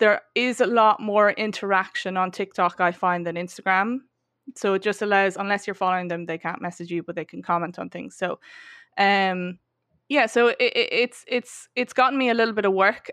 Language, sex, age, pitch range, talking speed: English, female, 20-39, 185-210 Hz, 200 wpm